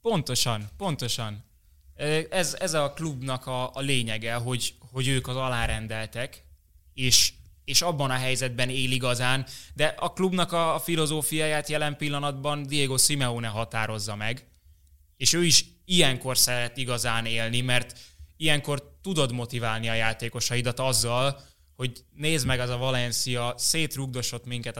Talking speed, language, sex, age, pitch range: 135 wpm, Hungarian, male, 20-39, 115-135 Hz